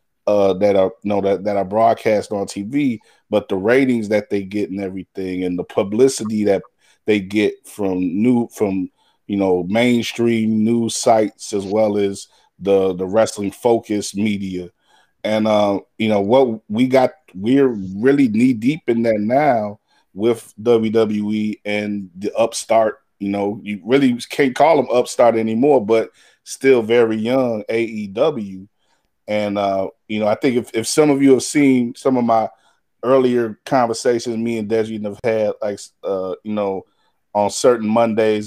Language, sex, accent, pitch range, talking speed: English, male, American, 105-125 Hz, 160 wpm